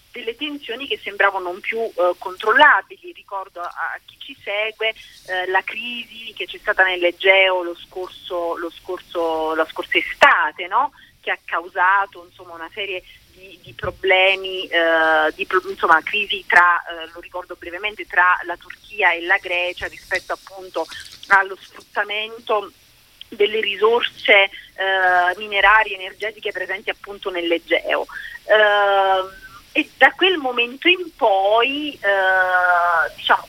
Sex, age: female, 40-59